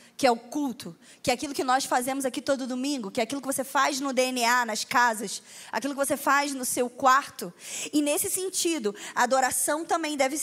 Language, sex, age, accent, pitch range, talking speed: Portuguese, female, 20-39, Brazilian, 215-280 Hz, 215 wpm